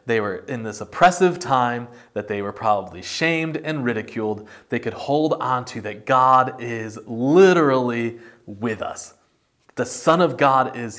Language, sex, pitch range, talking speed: English, male, 110-140 Hz, 160 wpm